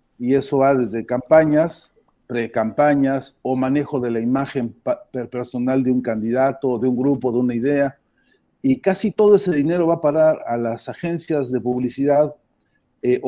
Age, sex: 40-59, male